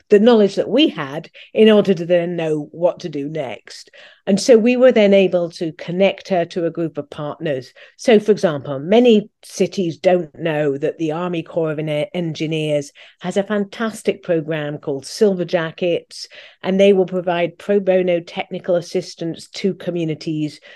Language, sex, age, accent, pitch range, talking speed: English, female, 50-69, British, 150-190 Hz, 170 wpm